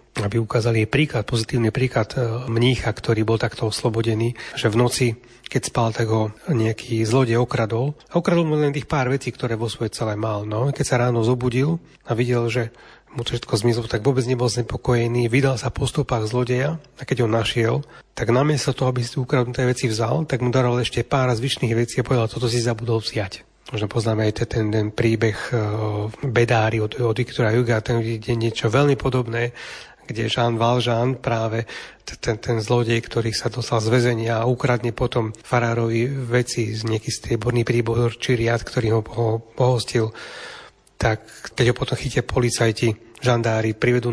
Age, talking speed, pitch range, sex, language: 30-49, 175 wpm, 115-125 Hz, male, Slovak